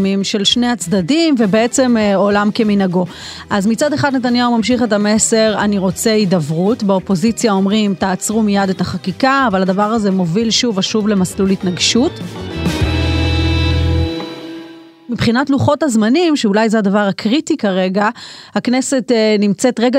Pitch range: 200-250 Hz